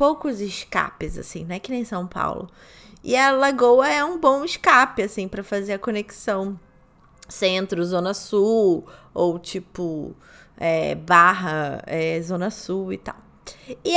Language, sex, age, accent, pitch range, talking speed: Portuguese, female, 20-39, Brazilian, 190-265 Hz, 135 wpm